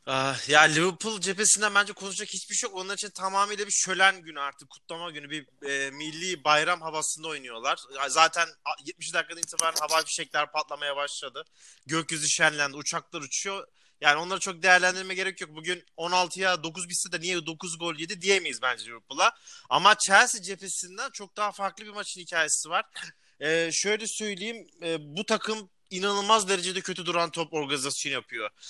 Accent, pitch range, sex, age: native, 165-200 Hz, male, 30-49